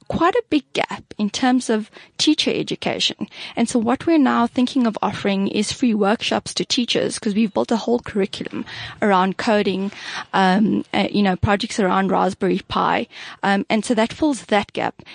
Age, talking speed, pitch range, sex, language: 10-29, 180 wpm, 205-255 Hz, female, English